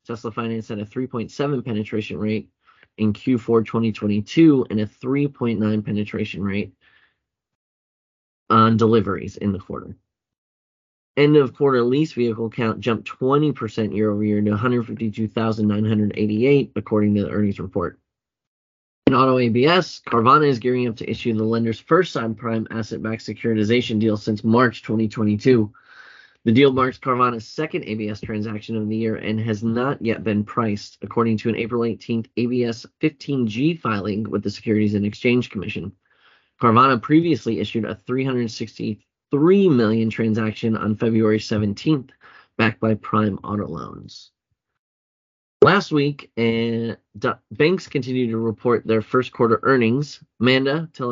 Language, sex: English, male